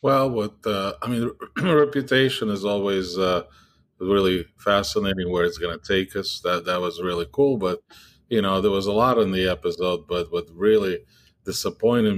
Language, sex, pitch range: English, male, 85-105 Hz